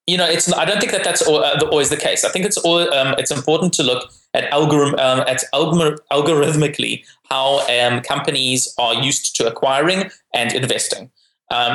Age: 20-39